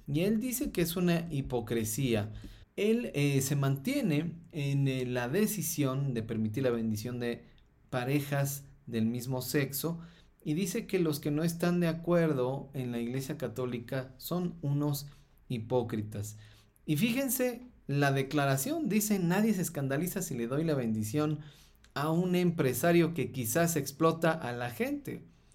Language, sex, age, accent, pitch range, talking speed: Spanish, male, 40-59, Mexican, 120-160 Hz, 145 wpm